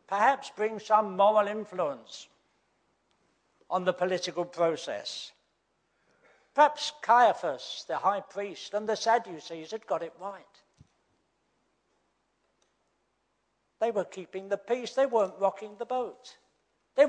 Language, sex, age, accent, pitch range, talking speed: English, male, 60-79, British, 185-230 Hz, 110 wpm